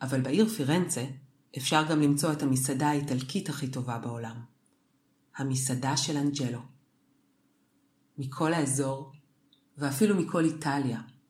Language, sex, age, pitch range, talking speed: Hebrew, female, 40-59, 135-155 Hz, 105 wpm